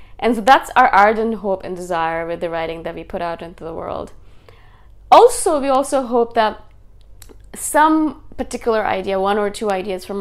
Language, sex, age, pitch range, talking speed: English, female, 20-39, 185-225 Hz, 180 wpm